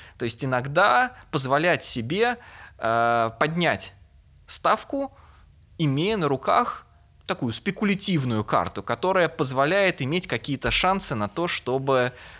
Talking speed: 105 wpm